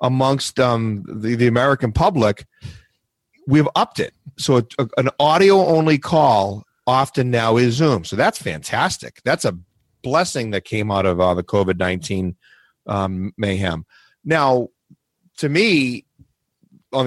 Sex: male